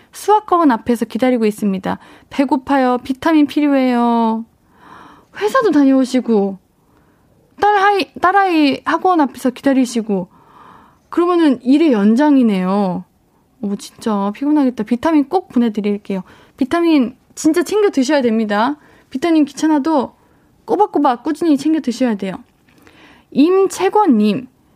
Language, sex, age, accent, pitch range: Korean, female, 20-39, native, 220-295 Hz